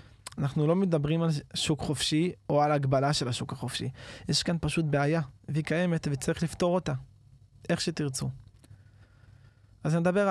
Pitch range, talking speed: 120-160 Hz, 150 wpm